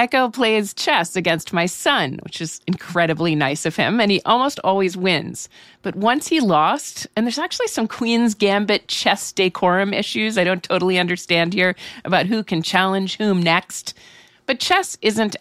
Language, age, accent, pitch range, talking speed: English, 40-59, American, 170-225 Hz, 170 wpm